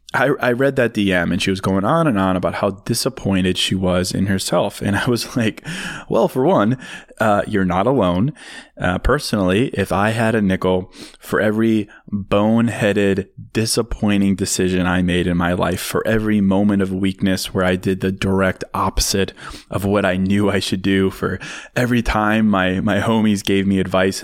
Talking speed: 185 wpm